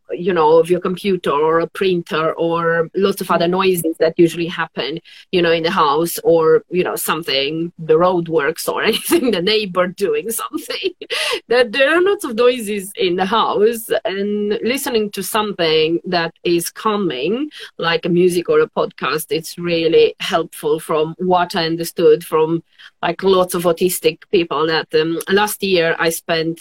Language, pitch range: English, 165-215 Hz